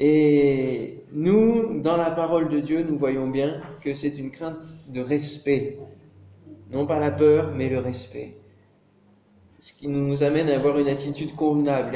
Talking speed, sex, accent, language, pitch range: 160 wpm, male, French, French, 145-200 Hz